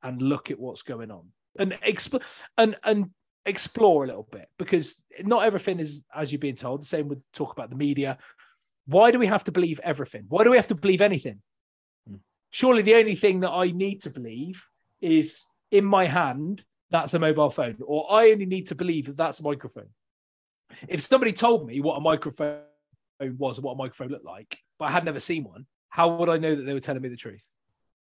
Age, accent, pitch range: 30-49, British, 140-205 Hz